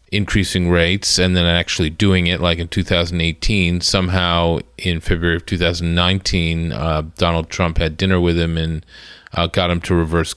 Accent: American